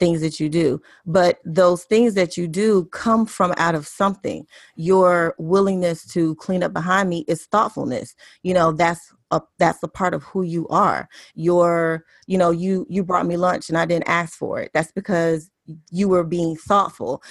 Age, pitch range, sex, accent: 30-49, 170-215 Hz, female, American